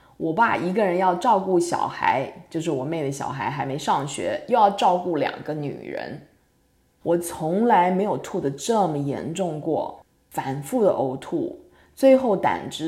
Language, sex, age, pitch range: Chinese, female, 20-39, 160-215 Hz